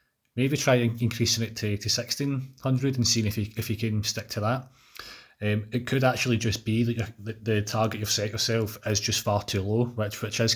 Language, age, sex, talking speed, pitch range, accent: English, 30-49, male, 220 wpm, 105-120 Hz, British